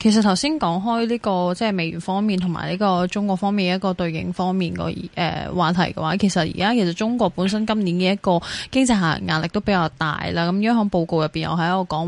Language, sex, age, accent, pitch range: Chinese, female, 20-39, native, 170-220 Hz